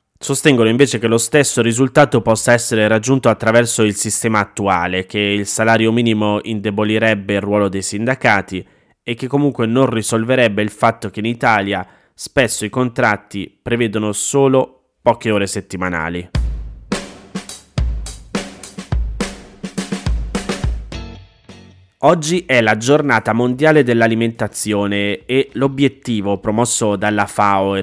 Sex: male